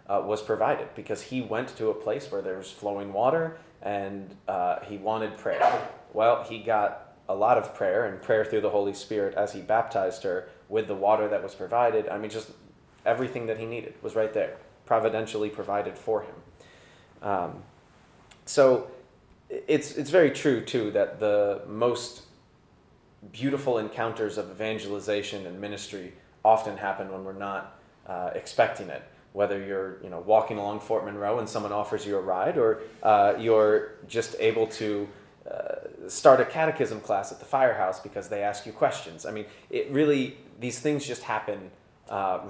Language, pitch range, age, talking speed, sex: English, 100-130 Hz, 20-39, 170 wpm, male